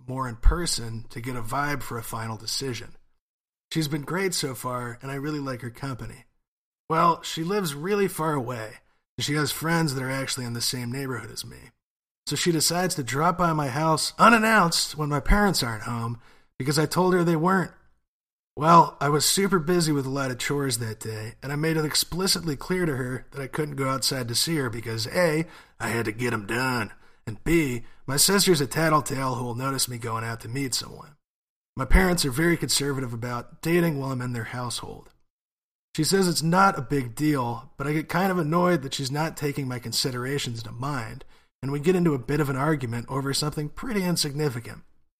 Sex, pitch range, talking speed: male, 125-160 Hz, 210 wpm